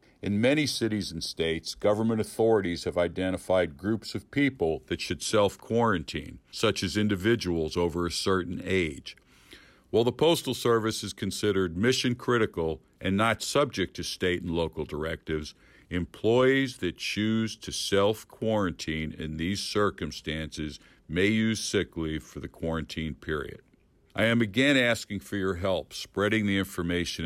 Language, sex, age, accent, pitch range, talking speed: English, male, 50-69, American, 80-105 Hz, 140 wpm